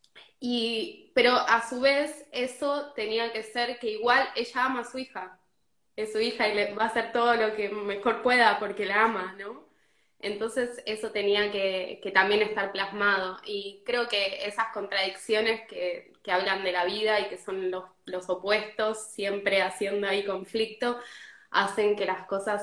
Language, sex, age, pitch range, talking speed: Spanish, female, 20-39, 190-220 Hz, 175 wpm